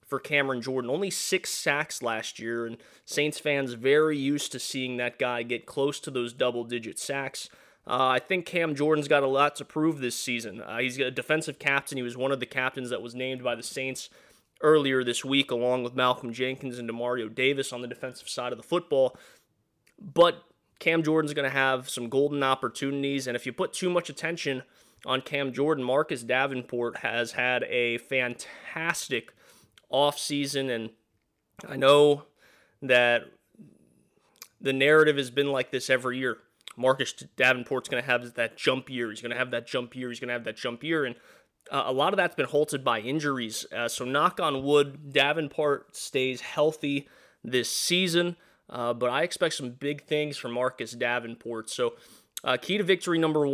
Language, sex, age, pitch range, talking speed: English, male, 20-39, 125-145 Hz, 185 wpm